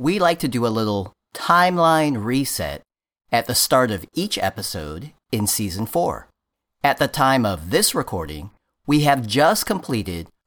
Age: 40-59